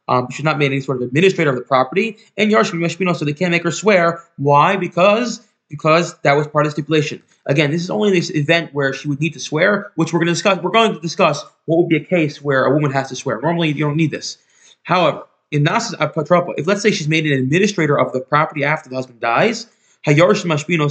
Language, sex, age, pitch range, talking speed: English, male, 20-39, 140-175 Hz, 230 wpm